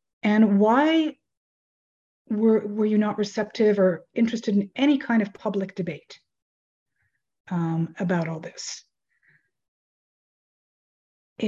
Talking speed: 105 wpm